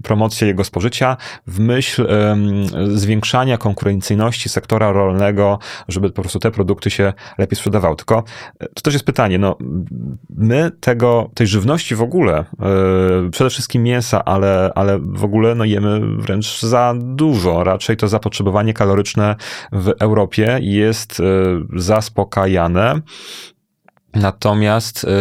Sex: male